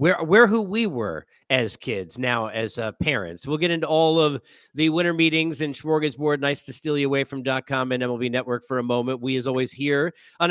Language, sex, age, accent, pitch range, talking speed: English, male, 40-59, American, 130-170 Hz, 225 wpm